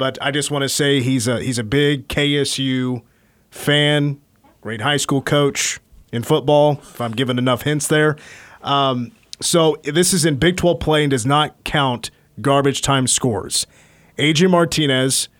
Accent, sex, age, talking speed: American, male, 30-49, 165 wpm